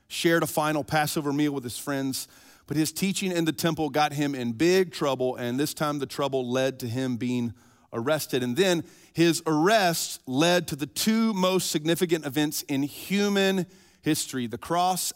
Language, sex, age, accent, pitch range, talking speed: English, male, 40-59, American, 130-170 Hz, 180 wpm